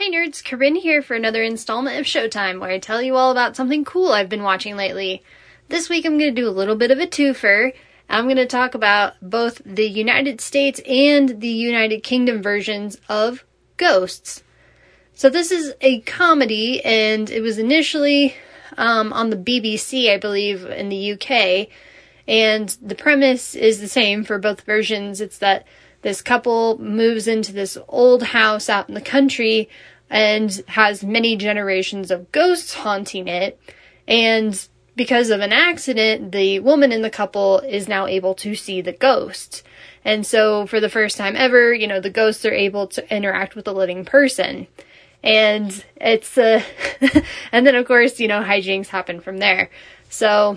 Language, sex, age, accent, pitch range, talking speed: English, female, 10-29, American, 205-255 Hz, 175 wpm